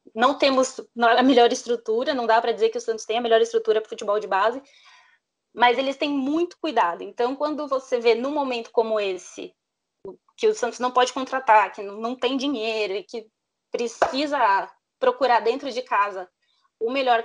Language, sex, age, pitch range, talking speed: Portuguese, female, 20-39, 230-295 Hz, 180 wpm